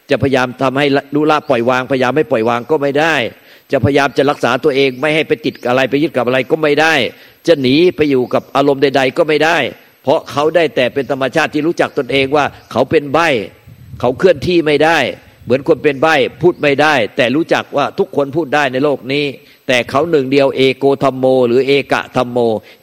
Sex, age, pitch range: male, 50-69, 125-150 Hz